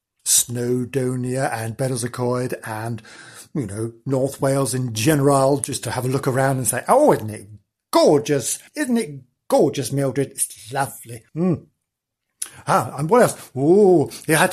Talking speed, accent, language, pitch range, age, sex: 150 wpm, British, English, 125-170 Hz, 50-69, male